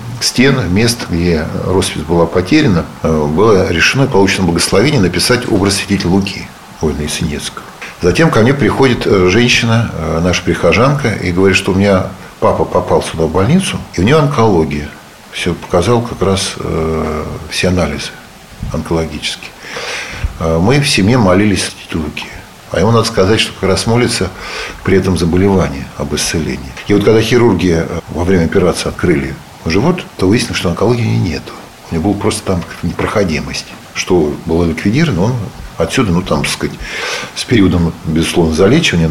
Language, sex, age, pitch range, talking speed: Russian, male, 50-69, 85-115 Hz, 145 wpm